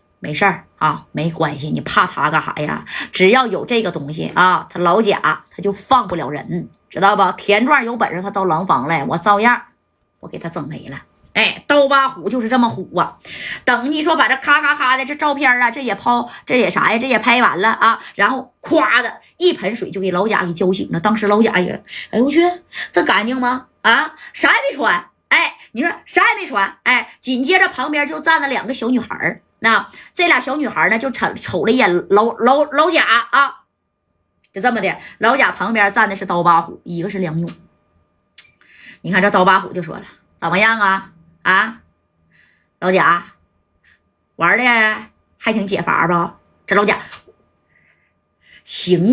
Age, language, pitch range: 20-39, Chinese, 185-265 Hz